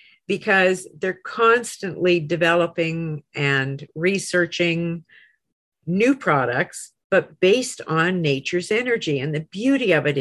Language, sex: English, female